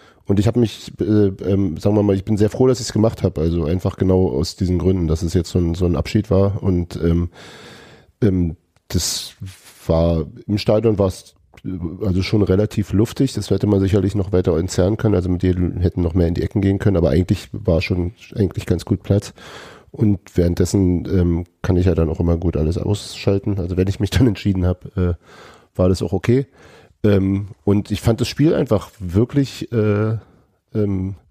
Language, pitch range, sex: German, 90-110 Hz, male